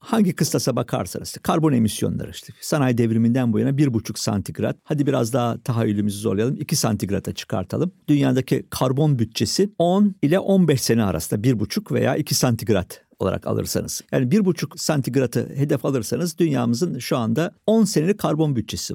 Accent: native